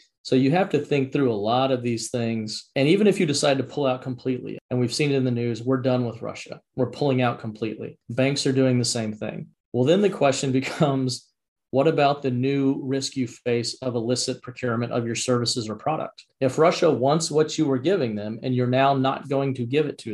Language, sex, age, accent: English, male, 40-59, American